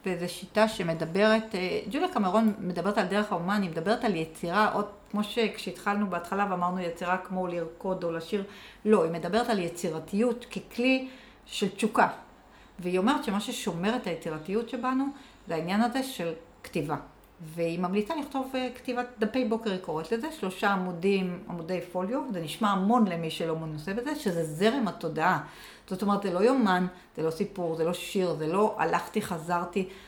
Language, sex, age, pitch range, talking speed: Hebrew, female, 60-79, 180-230 Hz, 160 wpm